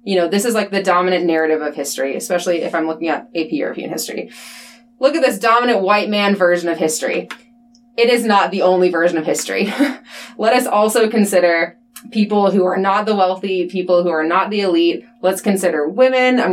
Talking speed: 200 wpm